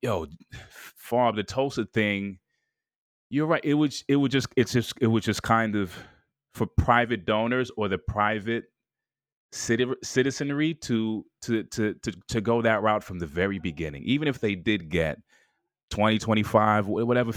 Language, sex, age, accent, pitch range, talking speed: English, male, 30-49, American, 100-125 Hz, 165 wpm